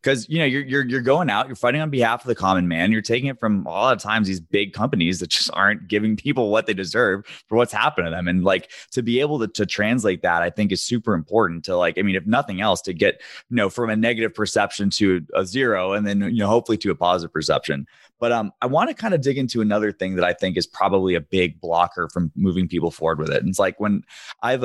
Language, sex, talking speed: English, male, 270 wpm